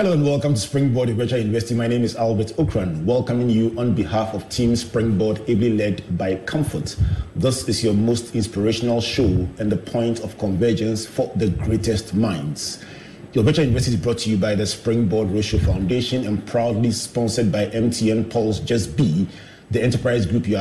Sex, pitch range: male, 110-125 Hz